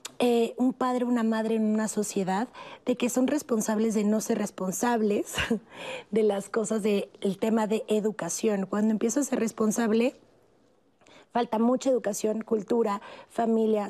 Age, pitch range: 30-49, 200-235 Hz